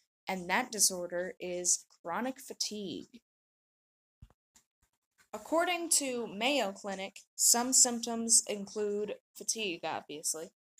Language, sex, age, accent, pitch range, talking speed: English, female, 10-29, American, 200-255 Hz, 85 wpm